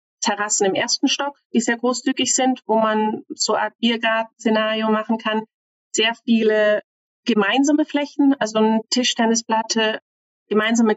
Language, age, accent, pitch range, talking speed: German, 40-59, German, 205-235 Hz, 130 wpm